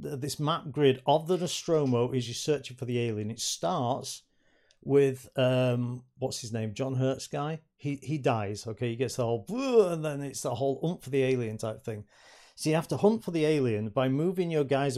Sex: male